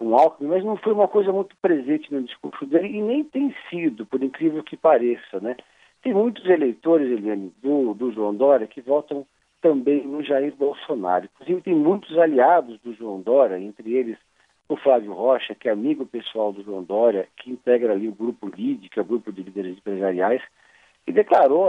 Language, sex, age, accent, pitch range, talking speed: Portuguese, male, 50-69, Brazilian, 110-150 Hz, 195 wpm